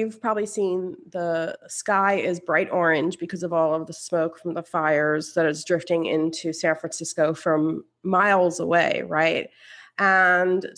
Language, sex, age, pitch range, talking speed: English, female, 30-49, 165-205 Hz, 155 wpm